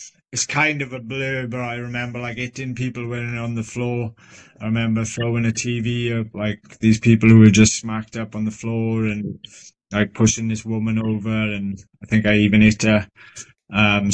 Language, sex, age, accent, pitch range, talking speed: English, male, 20-39, British, 110-120 Hz, 195 wpm